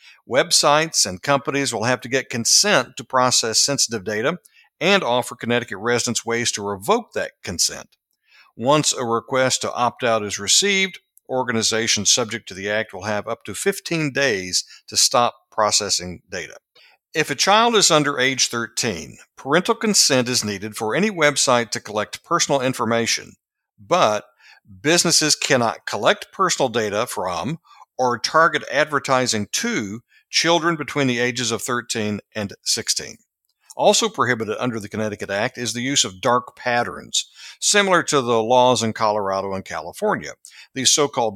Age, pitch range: 60-79, 110-145 Hz